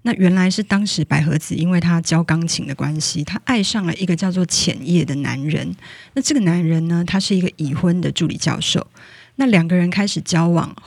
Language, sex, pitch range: Chinese, female, 160-190 Hz